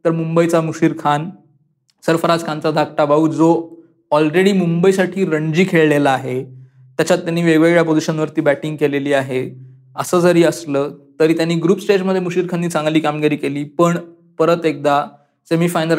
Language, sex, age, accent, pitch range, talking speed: Marathi, male, 20-39, native, 145-165 Hz, 145 wpm